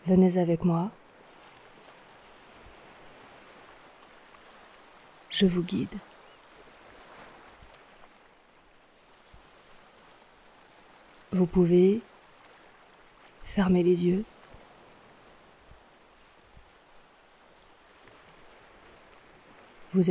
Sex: female